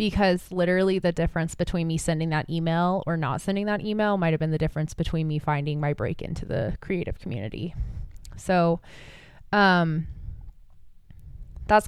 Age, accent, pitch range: 20-39, American, 155-175 Hz